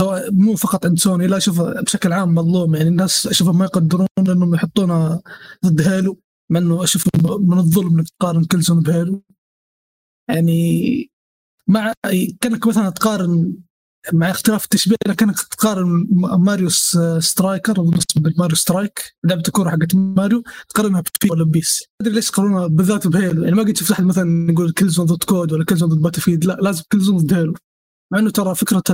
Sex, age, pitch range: male, 20-39, 170-205 Hz